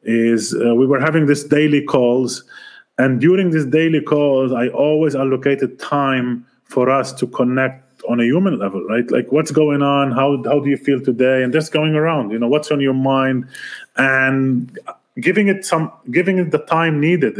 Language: English